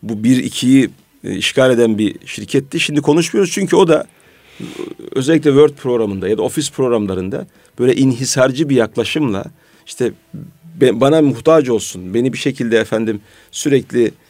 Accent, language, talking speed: native, Turkish, 145 wpm